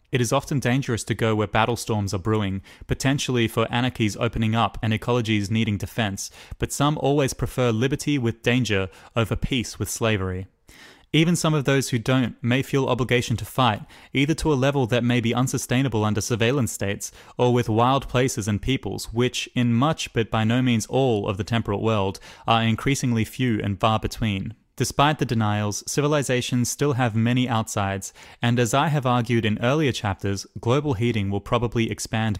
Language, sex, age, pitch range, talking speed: English, male, 20-39, 105-130 Hz, 180 wpm